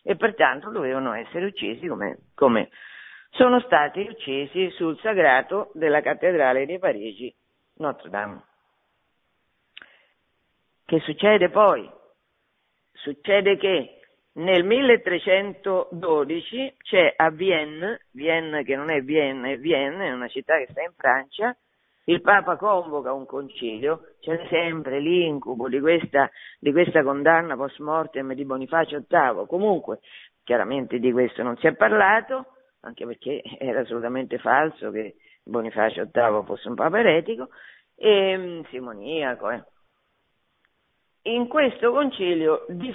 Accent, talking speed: native, 115 wpm